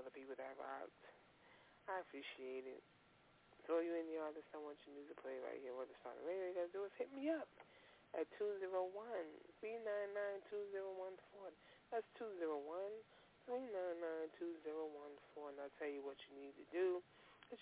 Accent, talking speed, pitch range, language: American, 165 wpm, 145-210 Hz, English